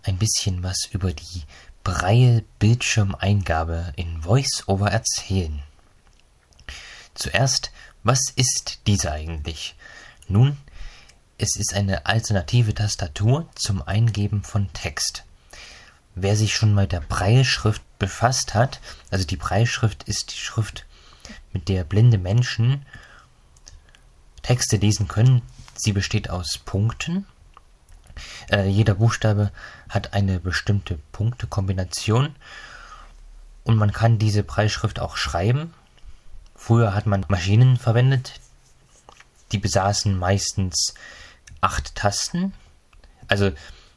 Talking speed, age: 100 wpm, 20-39